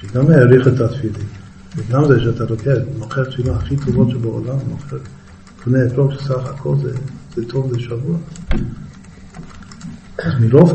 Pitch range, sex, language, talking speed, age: 115-140 Hz, male, Hebrew, 140 wpm, 50-69